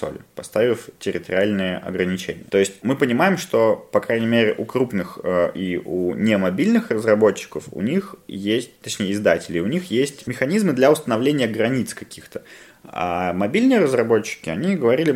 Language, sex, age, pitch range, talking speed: Russian, male, 20-39, 100-125 Hz, 145 wpm